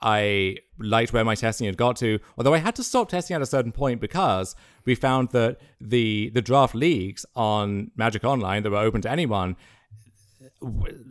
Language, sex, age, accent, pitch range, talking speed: English, male, 30-49, British, 105-130 Hz, 190 wpm